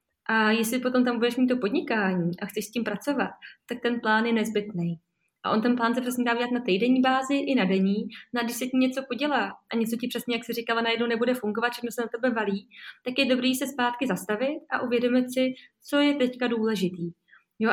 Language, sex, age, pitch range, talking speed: Czech, female, 20-39, 205-250 Hz, 225 wpm